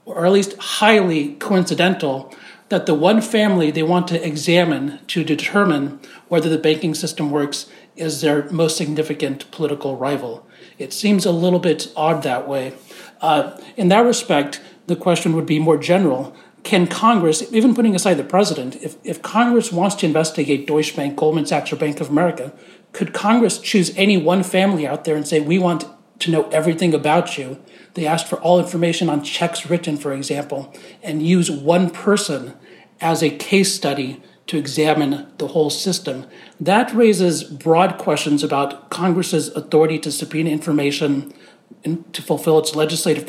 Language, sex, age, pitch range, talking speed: English, male, 40-59, 150-180 Hz, 165 wpm